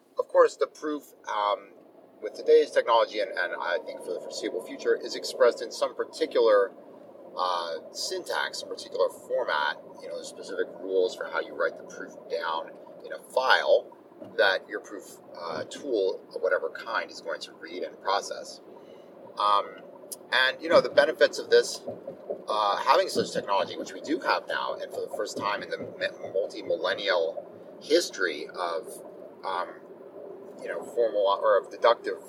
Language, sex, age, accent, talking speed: English, male, 30-49, American, 160 wpm